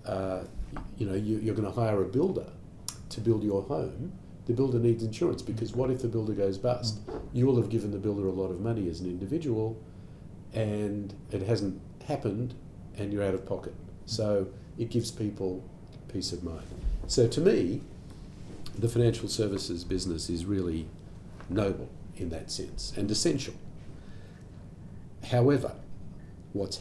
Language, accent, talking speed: English, Australian, 155 wpm